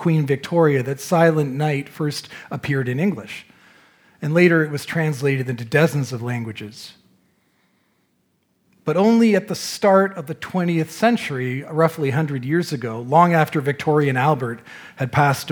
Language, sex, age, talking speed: English, male, 40-59, 145 wpm